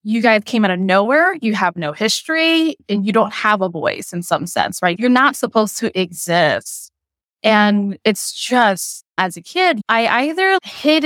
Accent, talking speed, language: American, 185 wpm, English